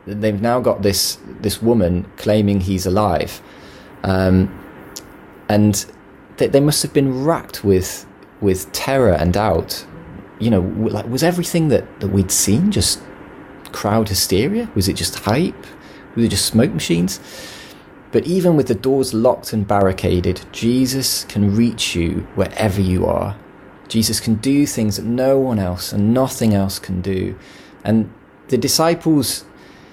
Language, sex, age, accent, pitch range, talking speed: English, male, 30-49, British, 95-115 Hz, 150 wpm